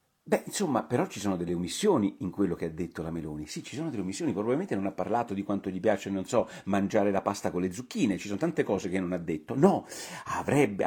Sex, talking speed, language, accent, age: male, 250 wpm, Italian, native, 40-59